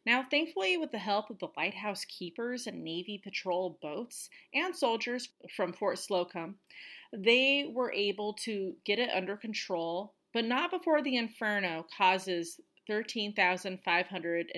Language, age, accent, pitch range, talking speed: English, 30-49, American, 185-240 Hz, 135 wpm